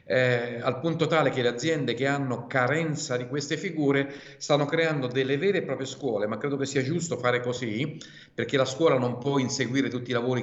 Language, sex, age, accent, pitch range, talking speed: Italian, male, 50-69, native, 115-140 Hz, 205 wpm